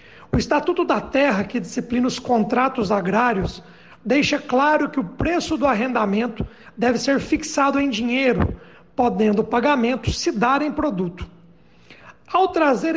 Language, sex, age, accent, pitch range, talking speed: Portuguese, male, 60-79, Brazilian, 225-290 Hz, 140 wpm